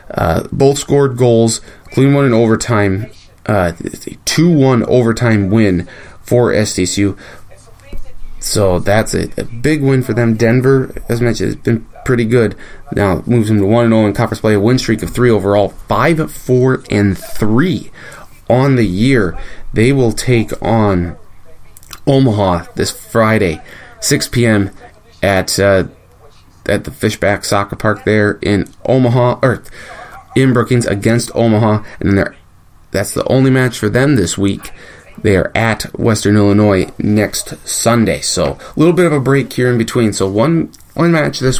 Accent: American